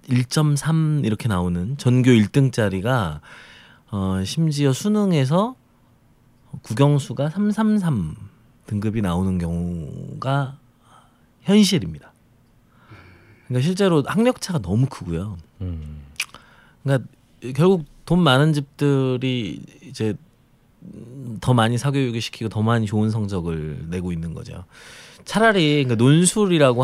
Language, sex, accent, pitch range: Korean, male, native, 105-150 Hz